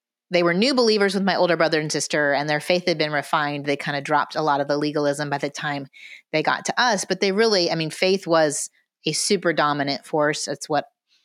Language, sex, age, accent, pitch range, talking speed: English, female, 30-49, American, 145-170 Hz, 240 wpm